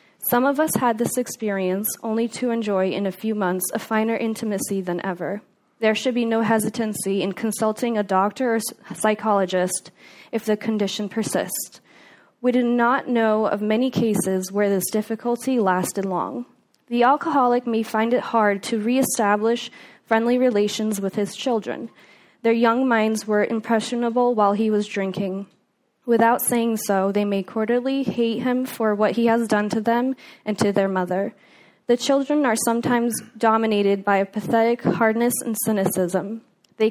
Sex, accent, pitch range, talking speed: female, American, 200-235 Hz, 160 wpm